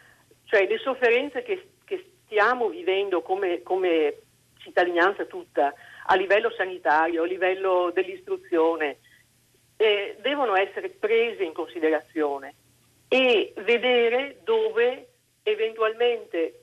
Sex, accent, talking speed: female, native, 90 wpm